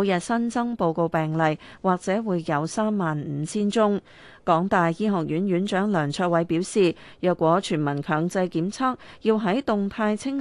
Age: 30-49